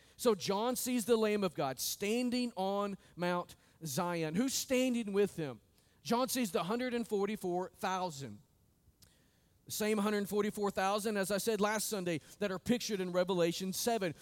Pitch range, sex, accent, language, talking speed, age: 180-230 Hz, male, American, English, 140 wpm, 40-59